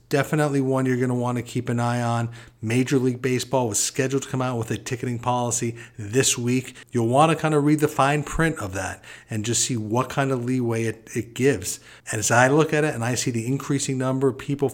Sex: male